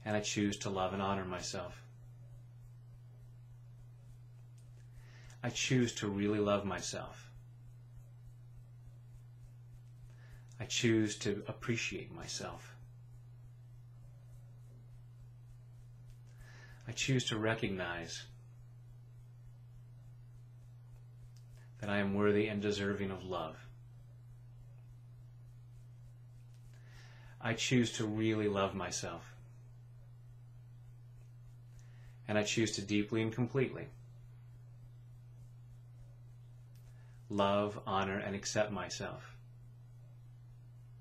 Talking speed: 70 wpm